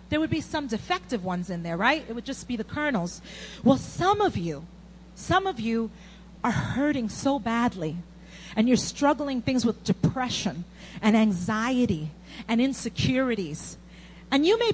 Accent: American